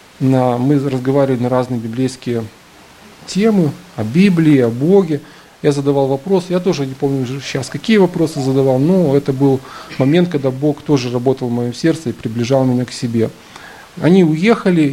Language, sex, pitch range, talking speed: Russian, male, 120-140 Hz, 160 wpm